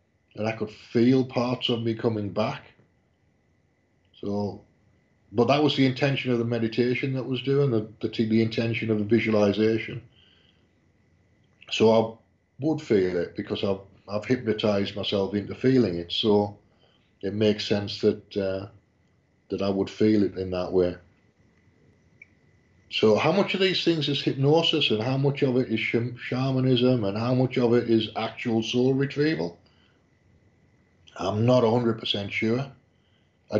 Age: 50-69